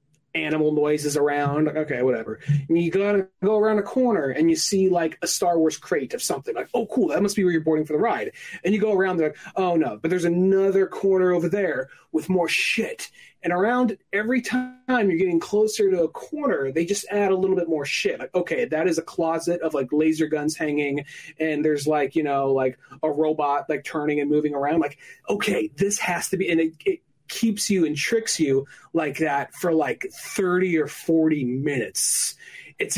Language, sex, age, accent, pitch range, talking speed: English, male, 30-49, American, 150-195 Hz, 210 wpm